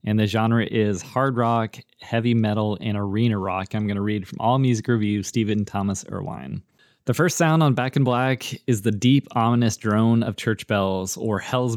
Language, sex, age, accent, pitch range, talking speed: English, male, 20-39, American, 105-120 Hz, 200 wpm